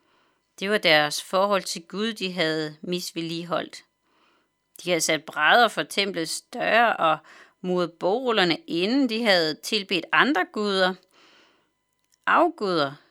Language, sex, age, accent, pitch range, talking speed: Danish, female, 40-59, native, 170-235 Hz, 120 wpm